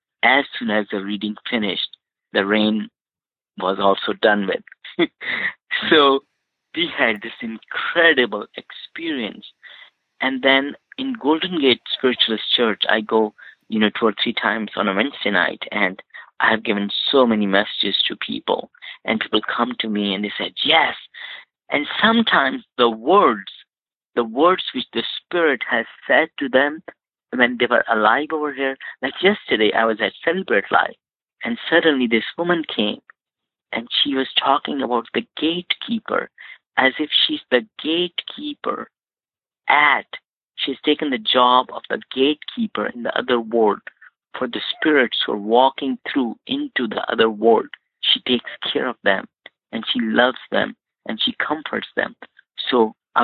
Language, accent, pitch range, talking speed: English, Indian, 110-180 Hz, 150 wpm